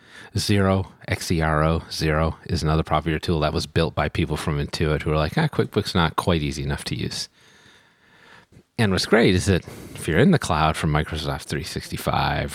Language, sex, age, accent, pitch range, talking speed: English, male, 30-49, American, 75-100 Hz, 200 wpm